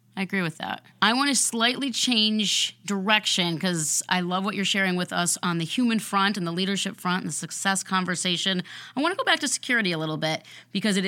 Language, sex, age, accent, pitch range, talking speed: English, female, 30-49, American, 170-205 Hz, 225 wpm